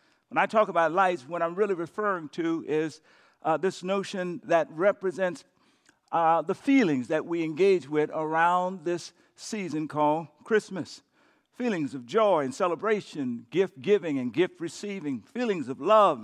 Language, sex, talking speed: English, male, 145 wpm